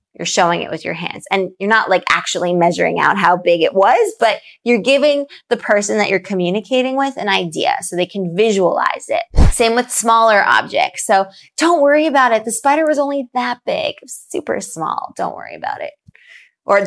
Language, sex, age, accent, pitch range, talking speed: English, female, 20-39, American, 195-260 Hz, 195 wpm